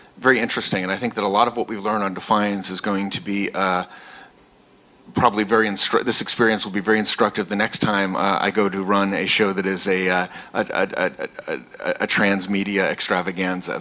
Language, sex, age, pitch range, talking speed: English, male, 30-49, 95-110 Hz, 215 wpm